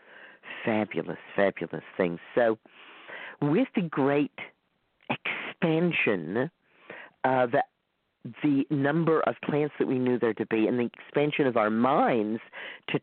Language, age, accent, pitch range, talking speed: English, 50-69, American, 115-145 Hz, 120 wpm